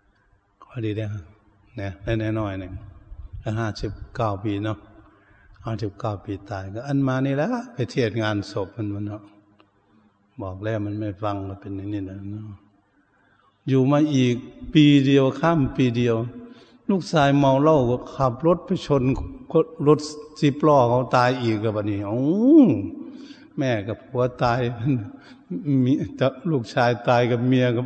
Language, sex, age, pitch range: Thai, male, 70-89, 100-125 Hz